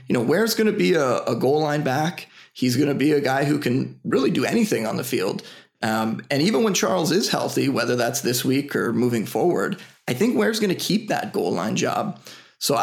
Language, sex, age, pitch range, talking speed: English, male, 20-39, 125-180 Hz, 235 wpm